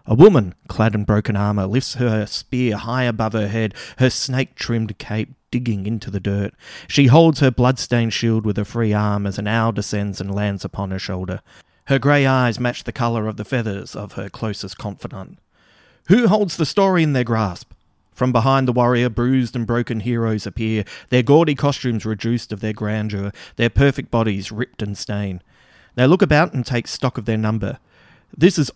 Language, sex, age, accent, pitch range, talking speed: English, male, 30-49, Australian, 105-130 Hz, 190 wpm